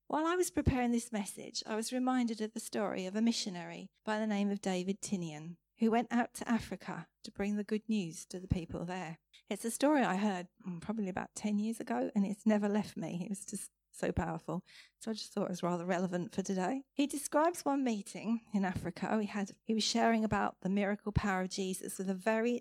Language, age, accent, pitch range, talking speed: English, 40-59, British, 190-235 Hz, 225 wpm